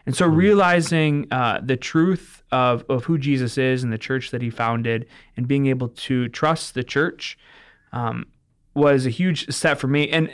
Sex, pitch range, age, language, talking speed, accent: male, 125-150 Hz, 20-39, English, 185 wpm, American